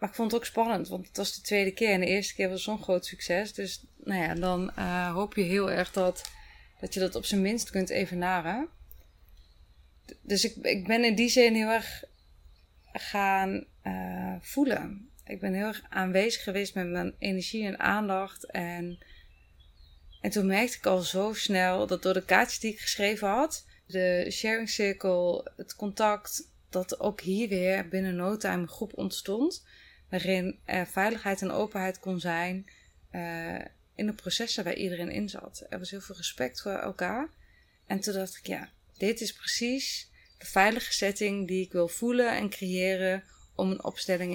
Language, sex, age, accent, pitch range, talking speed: Dutch, female, 20-39, Dutch, 180-205 Hz, 180 wpm